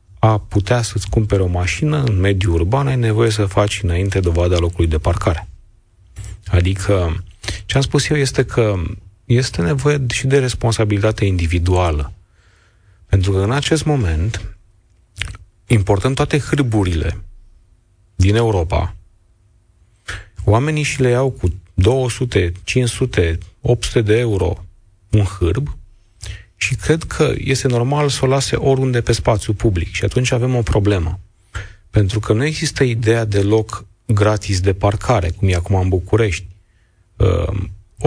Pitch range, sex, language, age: 95-125 Hz, male, Romanian, 40-59